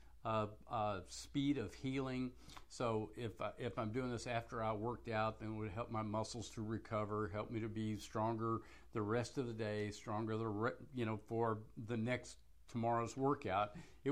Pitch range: 110-165 Hz